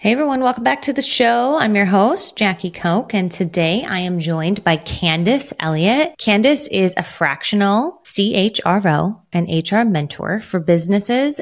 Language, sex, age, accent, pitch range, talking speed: English, female, 20-39, American, 165-215 Hz, 160 wpm